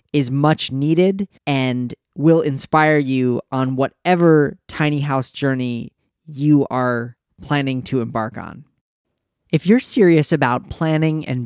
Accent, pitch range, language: American, 125-160 Hz, English